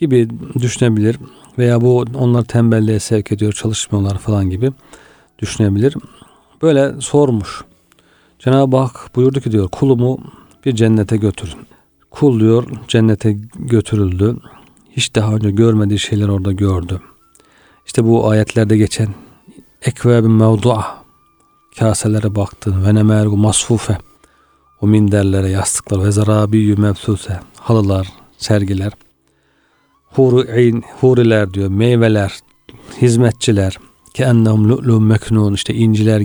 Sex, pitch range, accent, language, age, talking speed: male, 105-120 Hz, native, Turkish, 40-59, 105 wpm